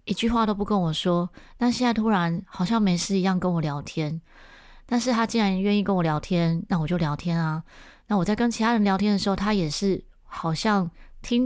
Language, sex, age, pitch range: Chinese, female, 20-39, 155-200 Hz